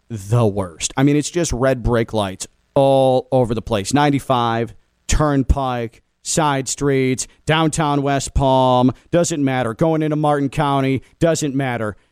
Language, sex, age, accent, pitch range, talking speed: English, male, 40-59, American, 135-170 Hz, 140 wpm